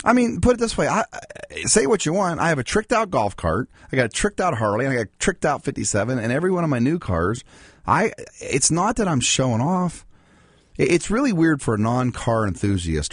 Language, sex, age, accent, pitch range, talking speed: English, male, 40-59, American, 95-150 Hz, 240 wpm